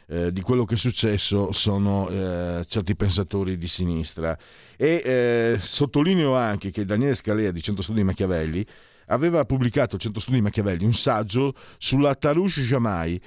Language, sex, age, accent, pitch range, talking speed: Italian, male, 50-69, native, 90-115 Hz, 160 wpm